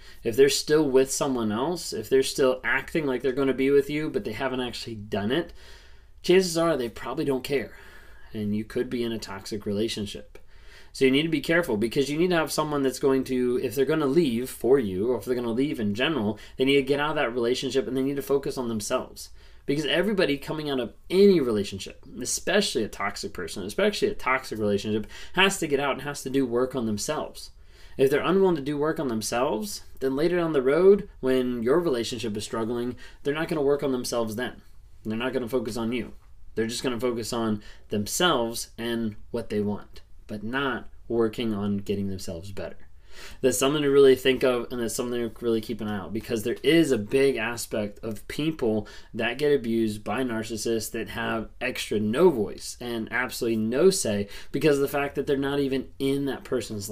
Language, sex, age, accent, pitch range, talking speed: English, male, 20-39, American, 110-140 Hz, 220 wpm